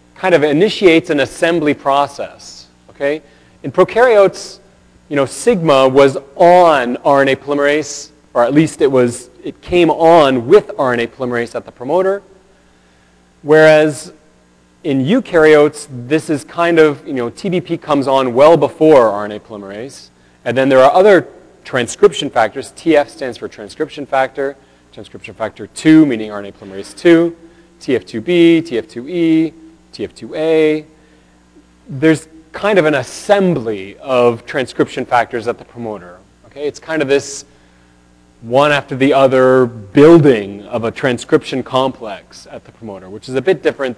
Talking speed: 140 wpm